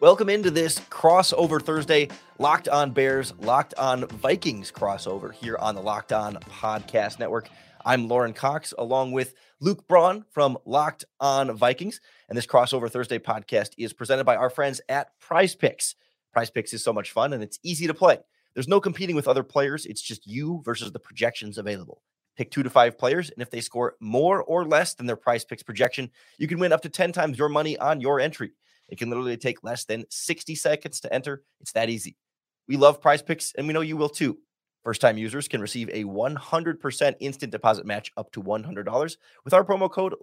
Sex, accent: male, American